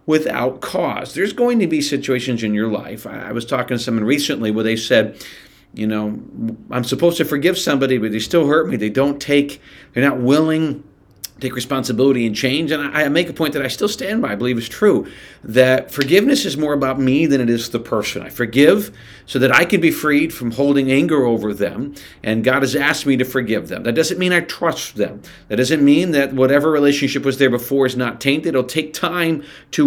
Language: English